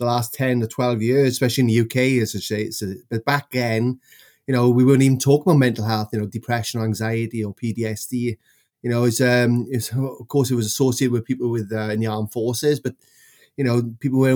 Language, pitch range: English, 115-140 Hz